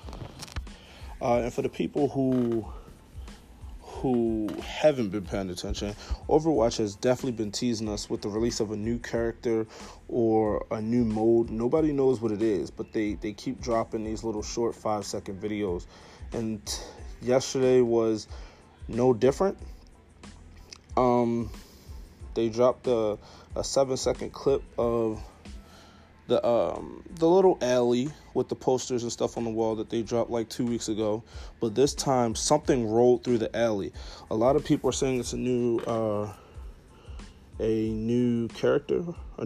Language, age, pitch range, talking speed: English, 20-39, 100-125 Hz, 150 wpm